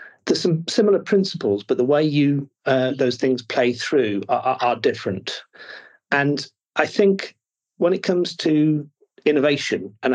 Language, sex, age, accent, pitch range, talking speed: English, male, 40-59, British, 120-150 Hz, 155 wpm